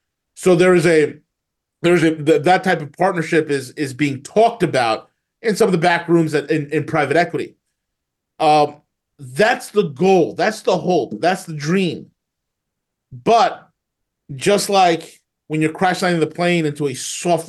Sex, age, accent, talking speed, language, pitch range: male, 30-49, American, 170 wpm, English, 130-175 Hz